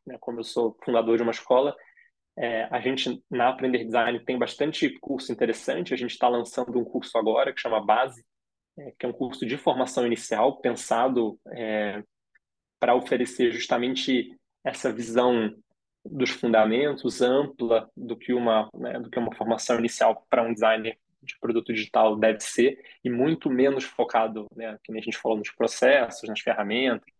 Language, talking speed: Portuguese, 170 wpm